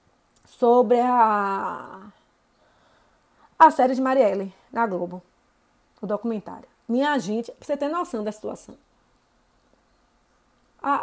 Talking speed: 105 wpm